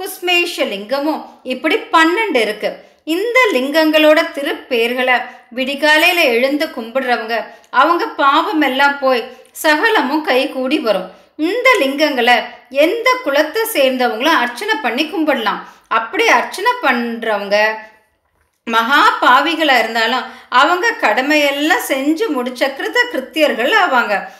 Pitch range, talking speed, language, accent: 245-325 Hz, 90 wpm, Tamil, native